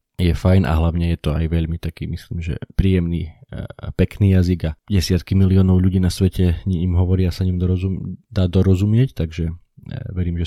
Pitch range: 85-95 Hz